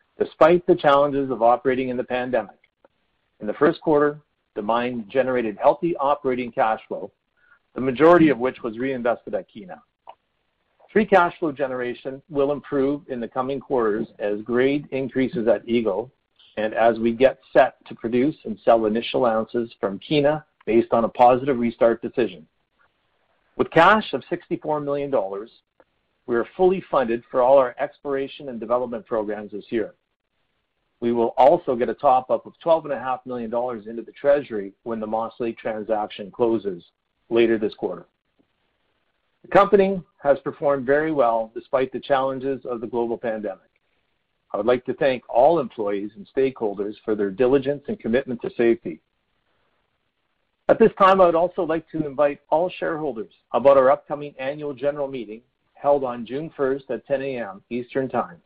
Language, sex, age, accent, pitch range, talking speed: English, male, 50-69, American, 115-145 Hz, 160 wpm